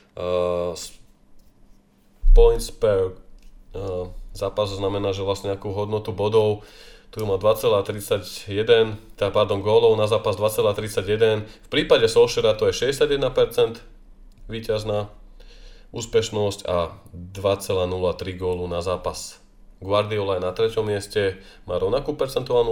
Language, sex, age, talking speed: Slovak, male, 20-39, 110 wpm